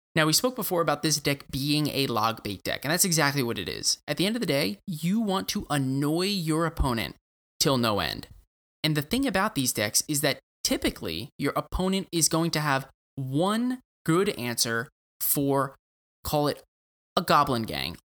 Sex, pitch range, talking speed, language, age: male, 130-175 Hz, 190 wpm, English, 20-39